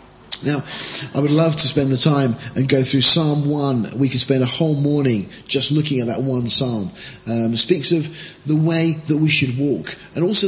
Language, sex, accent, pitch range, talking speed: English, male, British, 125-155 Hz, 210 wpm